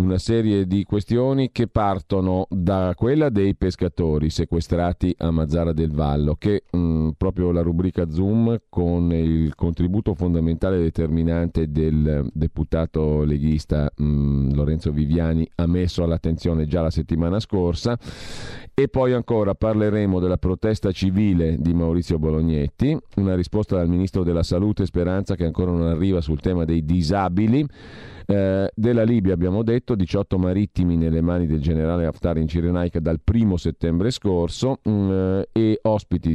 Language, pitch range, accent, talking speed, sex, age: Italian, 80-100 Hz, native, 140 wpm, male, 40-59